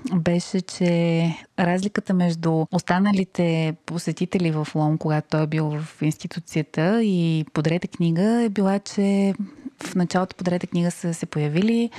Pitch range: 160-195 Hz